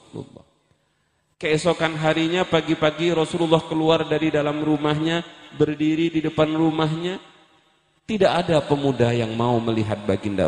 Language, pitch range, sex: Indonesian, 130-185 Hz, male